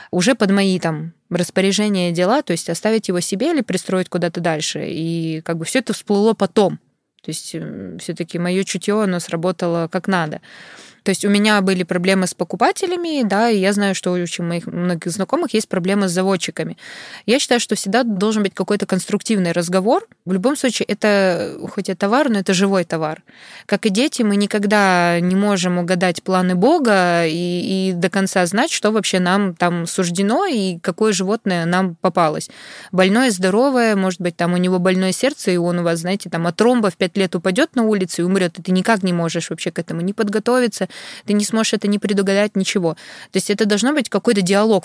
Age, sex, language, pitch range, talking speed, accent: 20-39, female, Russian, 180-215 Hz, 195 wpm, native